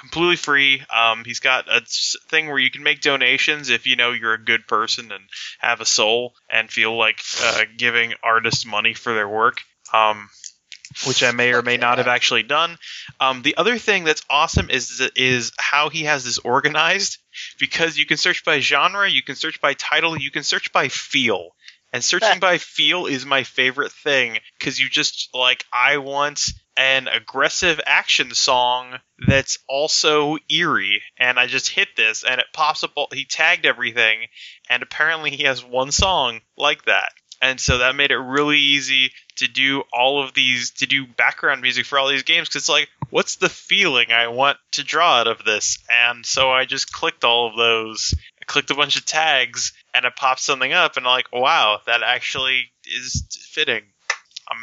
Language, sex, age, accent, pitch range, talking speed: English, male, 20-39, American, 120-145 Hz, 195 wpm